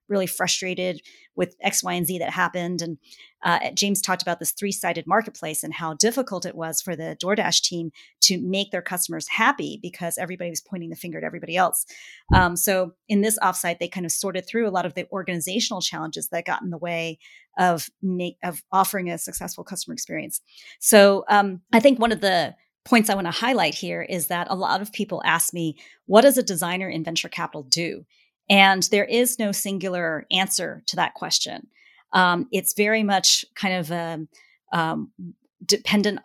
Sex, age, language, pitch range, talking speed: female, 40-59, English, 170-200 Hz, 190 wpm